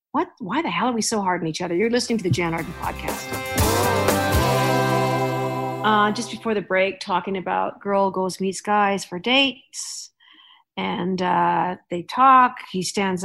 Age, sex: 50-69, female